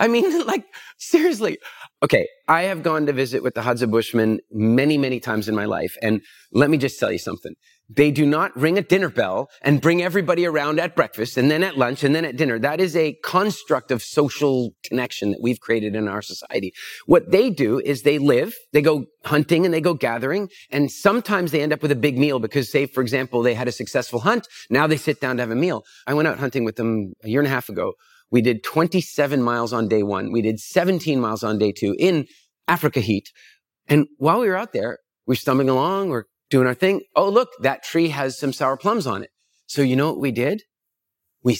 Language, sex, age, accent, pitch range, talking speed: English, male, 30-49, American, 125-175 Hz, 230 wpm